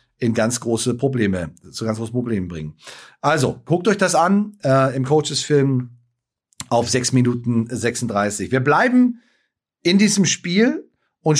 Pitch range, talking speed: 110-145 Hz, 140 wpm